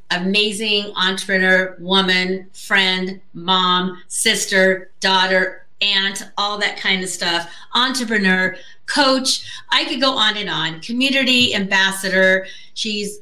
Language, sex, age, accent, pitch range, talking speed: English, female, 30-49, American, 180-210 Hz, 110 wpm